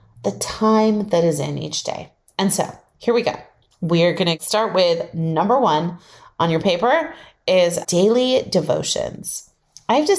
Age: 30-49